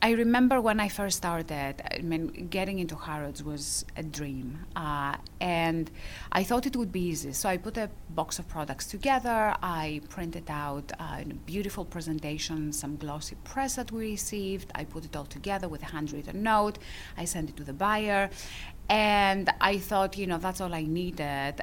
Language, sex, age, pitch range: English, female, 30-49, 145-185 Hz